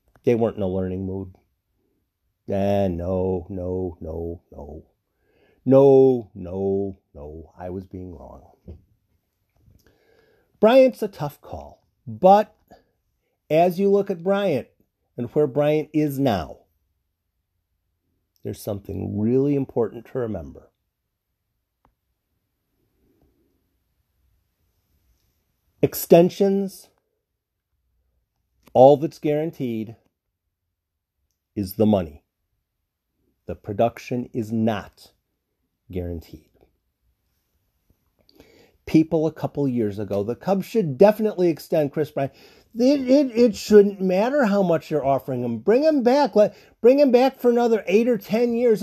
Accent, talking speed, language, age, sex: American, 105 wpm, English, 50-69, male